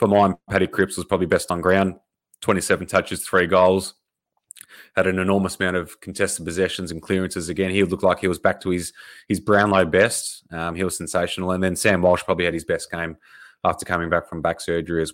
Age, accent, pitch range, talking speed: 20-39, Australian, 85-100 Hz, 220 wpm